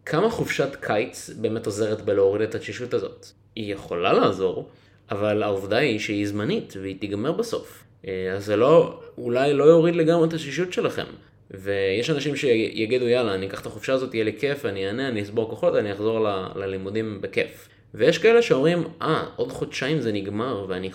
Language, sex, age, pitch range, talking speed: Hebrew, male, 20-39, 105-165 Hz, 175 wpm